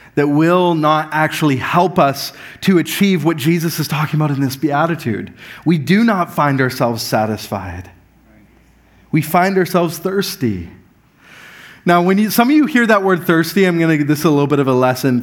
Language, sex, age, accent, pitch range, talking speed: English, male, 30-49, American, 150-205 Hz, 185 wpm